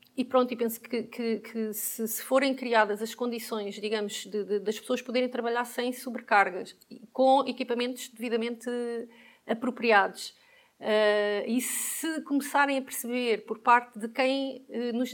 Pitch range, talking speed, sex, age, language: 210-245 Hz, 145 wpm, female, 30-49, Portuguese